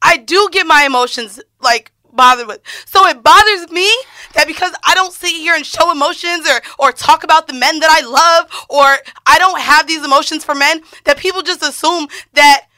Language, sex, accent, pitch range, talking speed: English, female, American, 285-355 Hz, 200 wpm